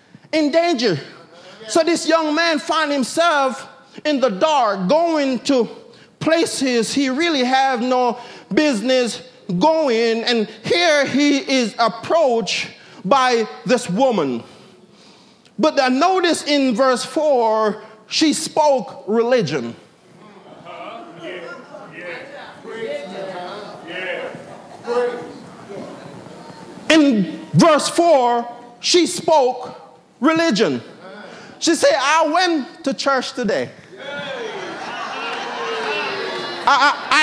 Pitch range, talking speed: 230-315 Hz, 80 wpm